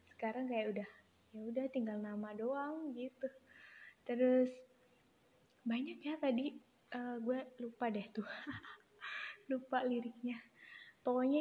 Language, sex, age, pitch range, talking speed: Indonesian, female, 20-39, 210-255 Hz, 110 wpm